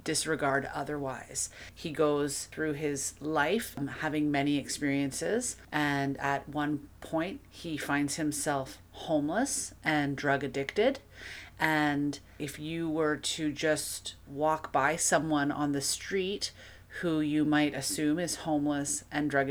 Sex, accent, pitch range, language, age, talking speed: female, American, 140-160 Hz, English, 30-49, 125 wpm